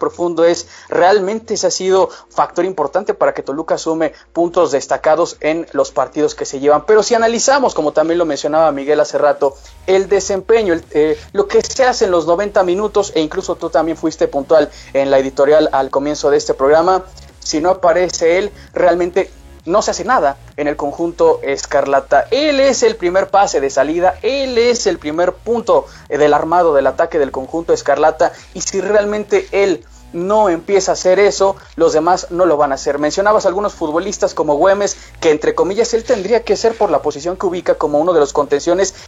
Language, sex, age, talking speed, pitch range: Spanish, male, 30-49, 195 wpm, 155-200 Hz